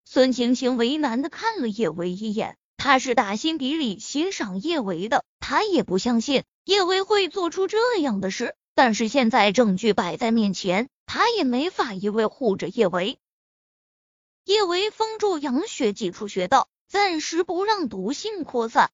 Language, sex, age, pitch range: Chinese, female, 20-39, 235-345 Hz